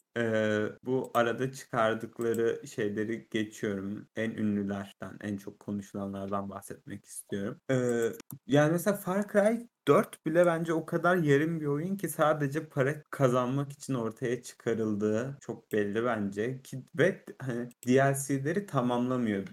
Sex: male